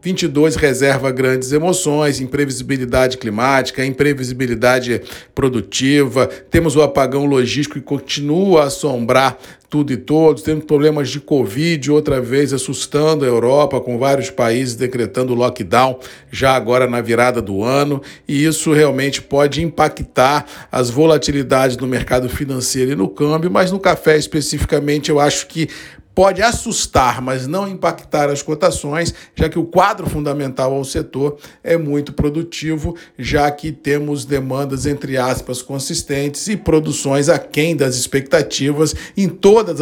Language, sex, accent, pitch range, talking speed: Portuguese, male, Brazilian, 130-155 Hz, 135 wpm